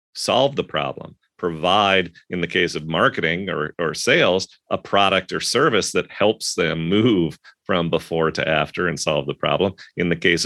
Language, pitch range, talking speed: English, 85-120 Hz, 180 wpm